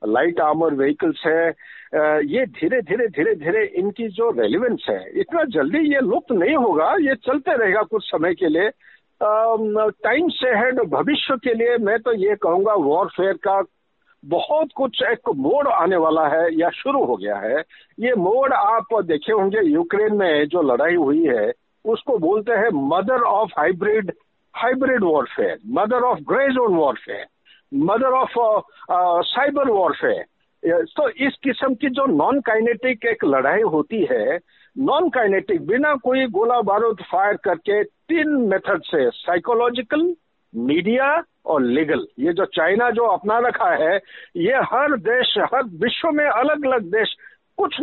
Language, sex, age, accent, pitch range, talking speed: Hindi, male, 60-79, native, 210-305 Hz, 150 wpm